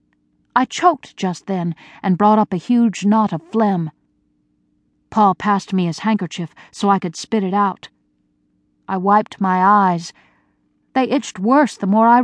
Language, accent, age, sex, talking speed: English, American, 50-69, female, 160 wpm